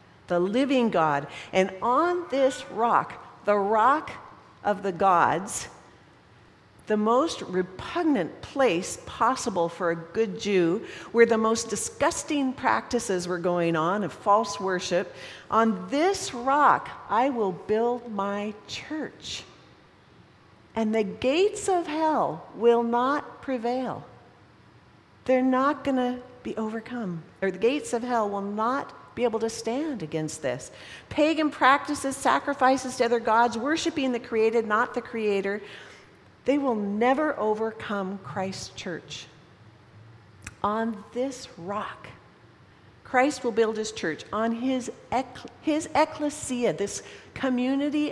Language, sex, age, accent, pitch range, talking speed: English, female, 50-69, American, 200-260 Hz, 125 wpm